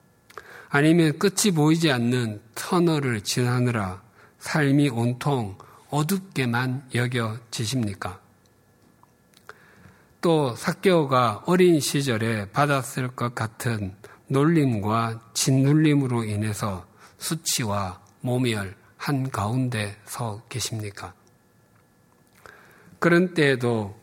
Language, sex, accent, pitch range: Korean, male, native, 110-145 Hz